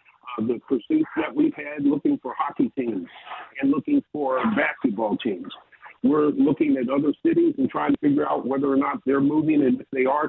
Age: 50-69